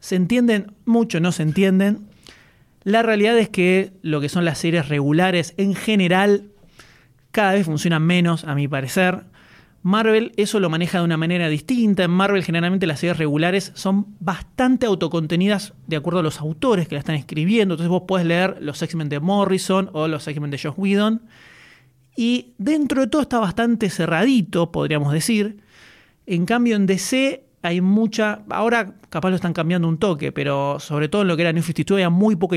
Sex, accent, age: male, Argentinian, 30-49